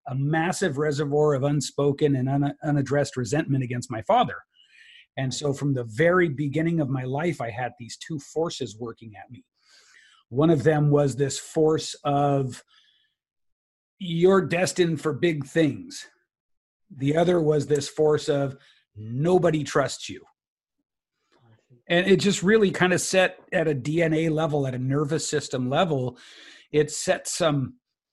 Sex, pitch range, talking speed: male, 140-170 Hz, 145 wpm